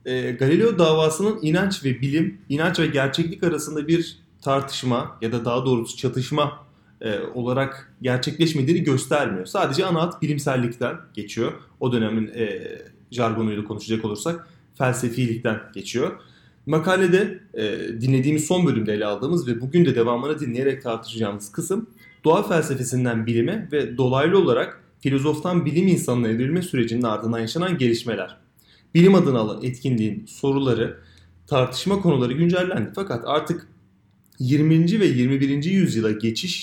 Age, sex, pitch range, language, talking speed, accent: 30-49, male, 120-170 Hz, Turkish, 115 wpm, native